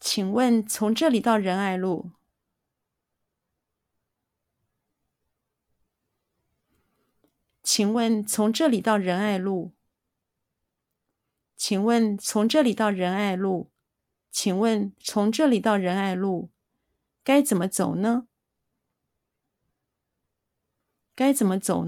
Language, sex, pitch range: Chinese, female, 185-235 Hz